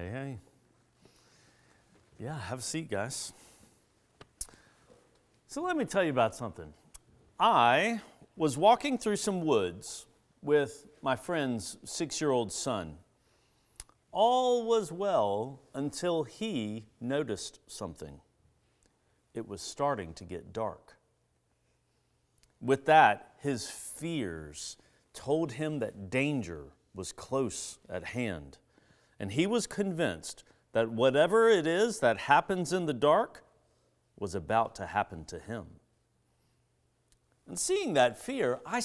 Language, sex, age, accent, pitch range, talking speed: English, male, 40-59, American, 115-190 Hz, 115 wpm